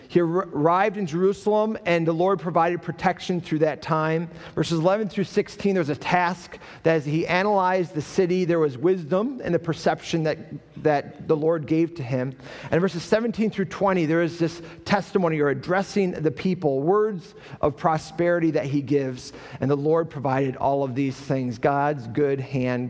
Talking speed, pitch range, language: 180 wpm, 135-180 Hz, English